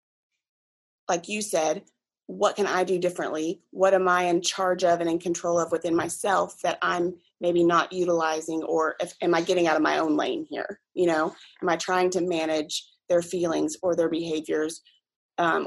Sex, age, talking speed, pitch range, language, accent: female, 30-49, 185 wpm, 165-190 Hz, English, American